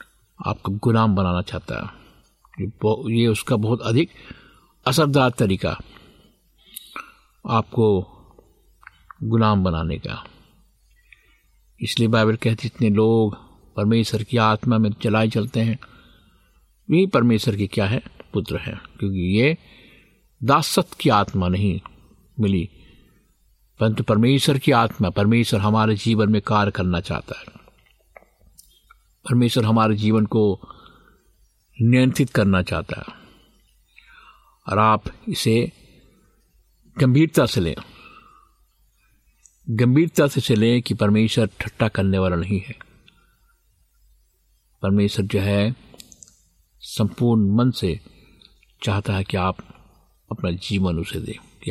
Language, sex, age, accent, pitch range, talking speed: Hindi, male, 60-79, native, 95-115 Hz, 110 wpm